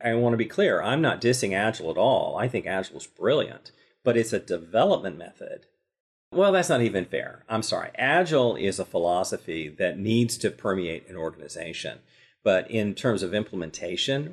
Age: 40-59